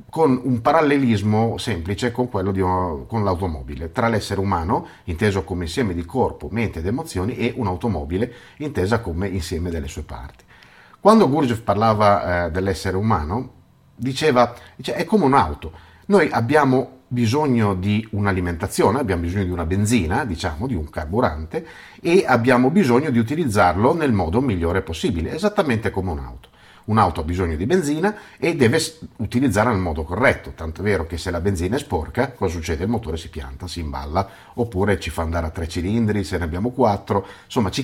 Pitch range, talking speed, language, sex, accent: 85-120 Hz, 170 wpm, Italian, male, native